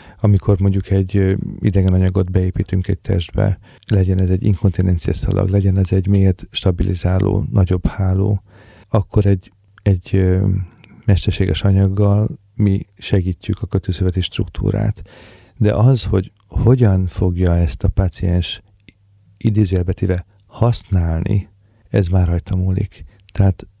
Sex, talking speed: male, 115 wpm